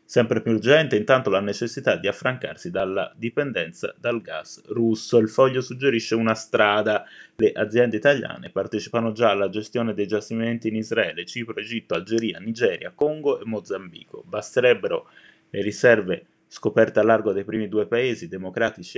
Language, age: Italian, 20-39